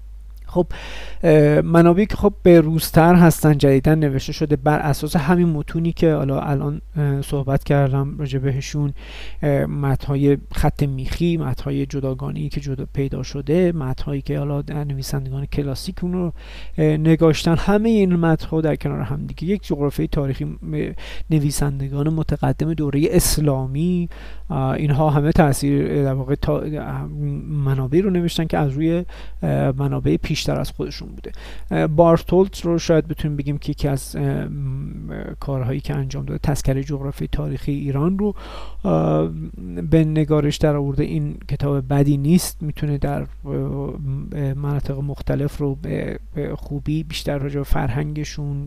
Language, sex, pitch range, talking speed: Persian, male, 140-160 Hz, 130 wpm